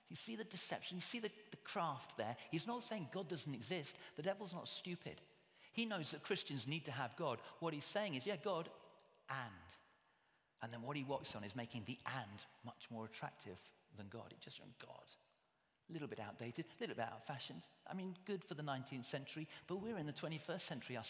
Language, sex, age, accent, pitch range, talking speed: English, male, 40-59, British, 135-185 Hz, 215 wpm